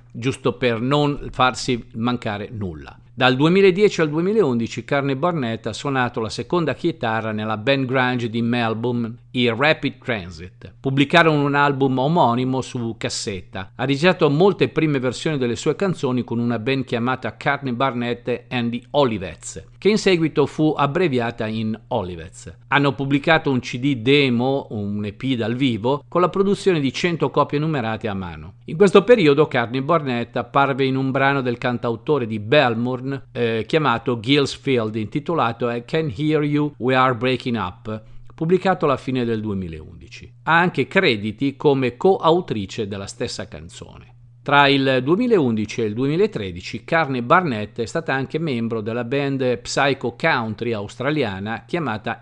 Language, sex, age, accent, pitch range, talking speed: Italian, male, 50-69, native, 115-145 Hz, 145 wpm